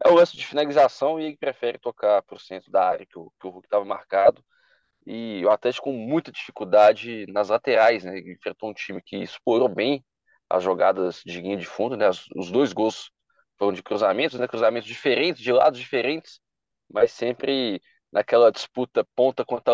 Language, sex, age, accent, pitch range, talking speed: Portuguese, male, 20-39, Brazilian, 105-150 Hz, 190 wpm